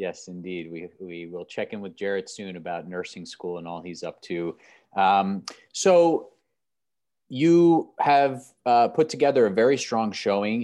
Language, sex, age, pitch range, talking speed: English, male, 30-49, 90-105 Hz, 165 wpm